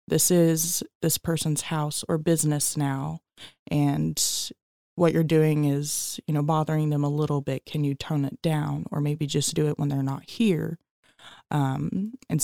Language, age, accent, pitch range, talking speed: English, 20-39, American, 145-180 Hz, 175 wpm